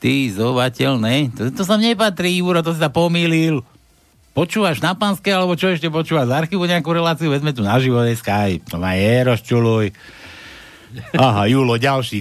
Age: 60-79